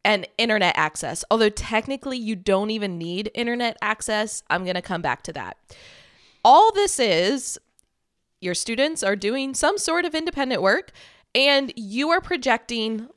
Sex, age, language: female, 20-39, English